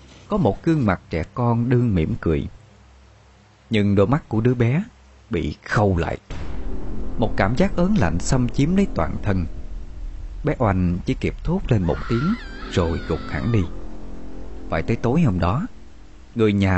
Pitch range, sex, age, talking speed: 85-125 Hz, male, 20-39, 170 wpm